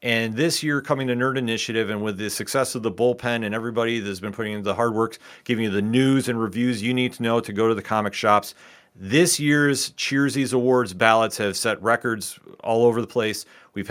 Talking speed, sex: 225 wpm, male